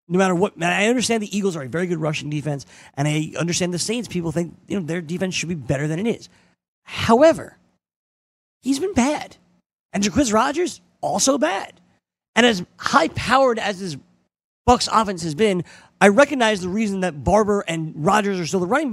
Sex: male